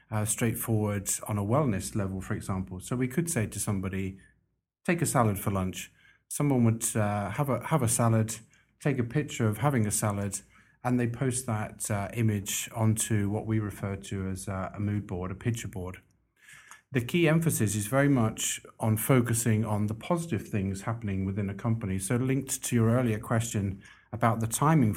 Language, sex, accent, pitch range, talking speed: English, male, British, 105-120 Hz, 185 wpm